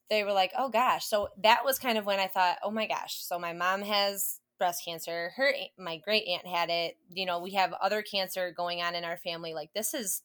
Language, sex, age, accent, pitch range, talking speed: English, female, 20-39, American, 170-195 Hz, 245 wpm